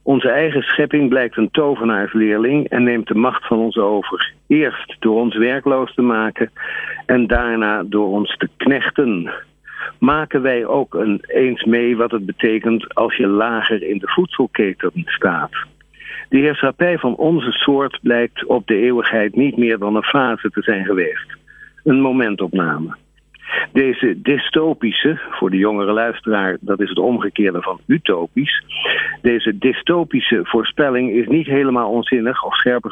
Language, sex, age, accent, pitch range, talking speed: Dutch, male, 50-69, Dutch, 110-140 Hz, 145 wpm